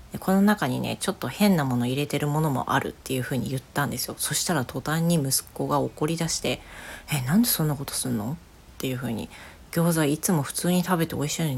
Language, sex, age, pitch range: Japanese, female, 40-59, 135-175 Hz